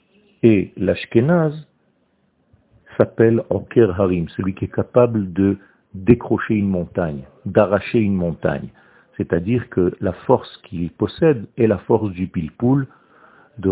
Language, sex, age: French, male, 50-69